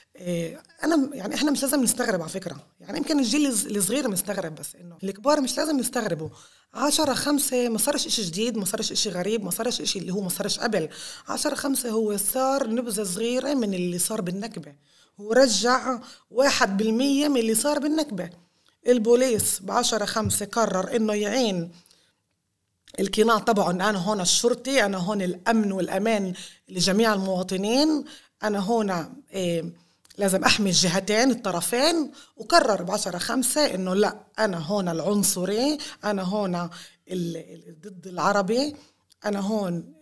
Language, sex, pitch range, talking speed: Arabic, female, 180-245 Hz, 135 wpm